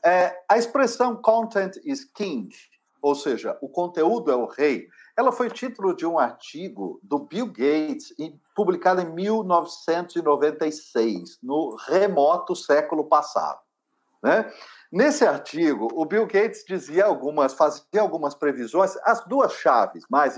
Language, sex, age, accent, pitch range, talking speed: Portuguese, male, 50-69, Brazilian, 155-220 Hz, 130 wpm